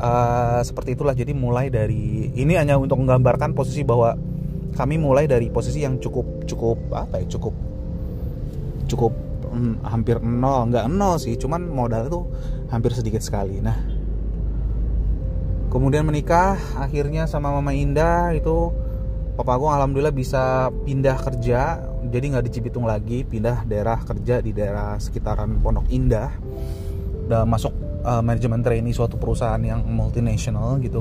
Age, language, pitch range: 20-39, Indonesian, 115-145 Hz